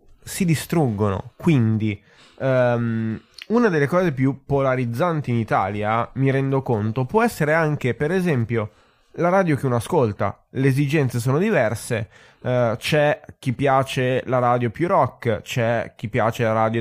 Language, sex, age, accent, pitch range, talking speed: Italian, male, 20-39, native, 120-175 Hz, 140 wpm